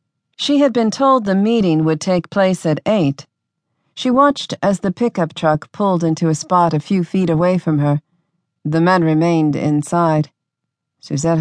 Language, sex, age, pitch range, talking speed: English, female, 40-59, 150-195 Hz, 170 wpm